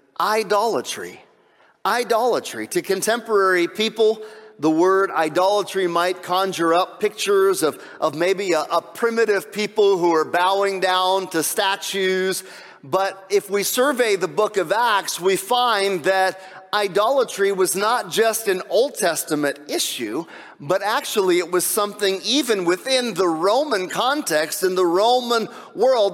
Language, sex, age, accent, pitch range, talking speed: English, male, 40-59, American, 190-240 Hz, 135 wpm